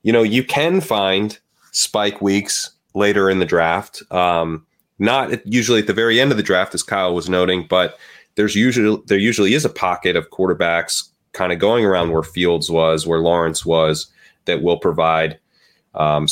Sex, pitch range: male, 80-95 Hz